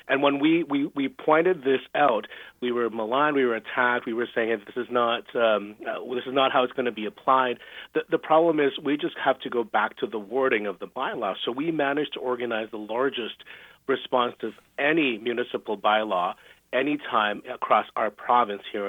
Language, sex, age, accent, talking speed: English, male, 40-59, American, 205 wpm